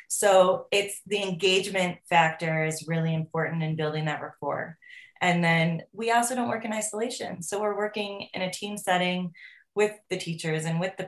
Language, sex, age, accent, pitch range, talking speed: English, female, 20-39, American, 170-195 Hz, 180 wpm